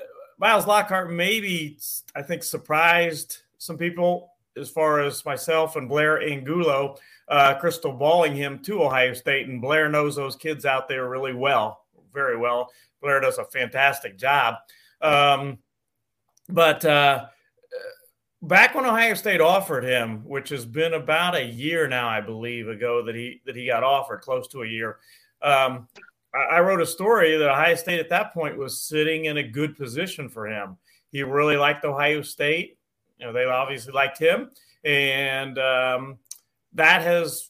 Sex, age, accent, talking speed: male, 40-59, American, 160 wpm